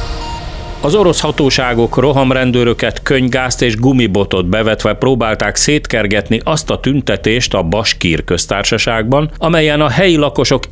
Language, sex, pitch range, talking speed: Hungarian, male, 100-135 Hz, 110 wpm